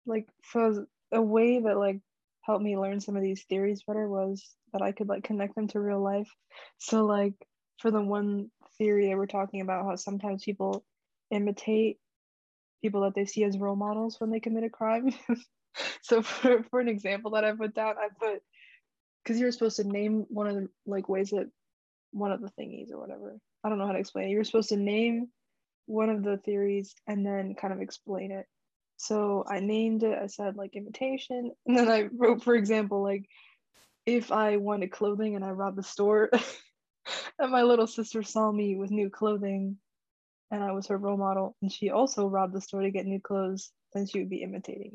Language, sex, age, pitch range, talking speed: English, female, 20-39, 195-225 Hz, 205 wpm